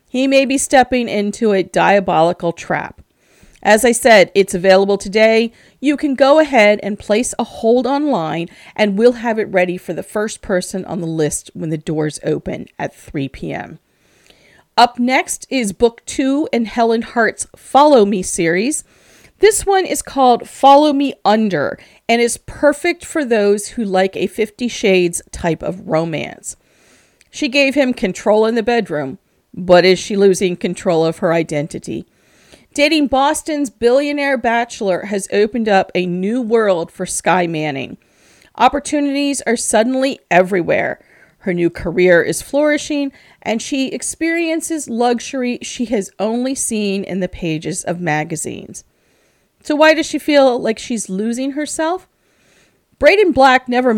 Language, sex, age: English, female, 40-59